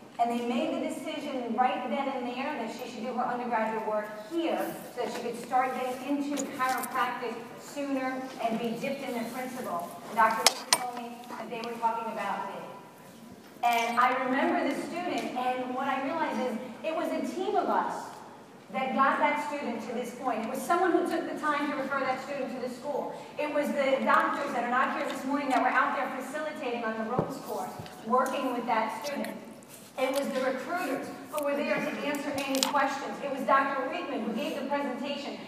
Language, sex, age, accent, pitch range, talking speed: English, female, 40-59, American, 245-290 Hz, 205 wpm